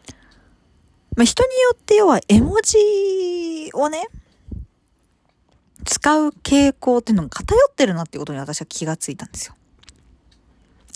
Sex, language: female, Japanese